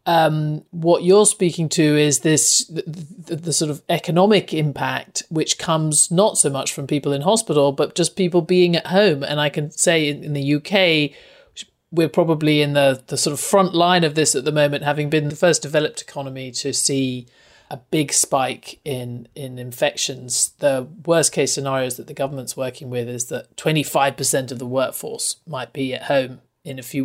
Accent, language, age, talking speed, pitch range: British, English, 40-59, 195 wpm, 135-175 Hz